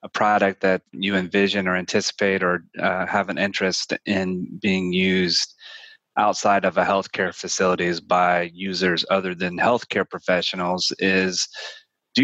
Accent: American